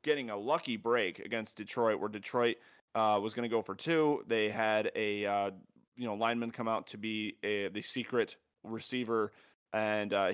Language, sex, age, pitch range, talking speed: English, male, 30-49, 110-135 Hz, 185 wpm